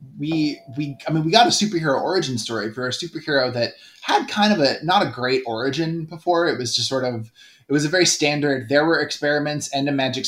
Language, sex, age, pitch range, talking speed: English, male, 20-39, 120-145 Hz, 230 wpm